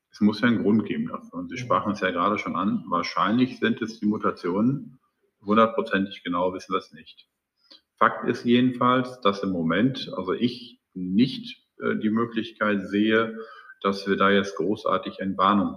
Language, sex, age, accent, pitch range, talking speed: German, male, 50-69, German, 100-125 Hz, 170 wpm